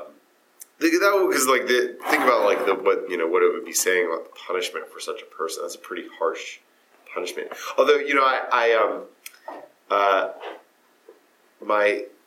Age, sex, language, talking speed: 30-49, male, English, 175 wpm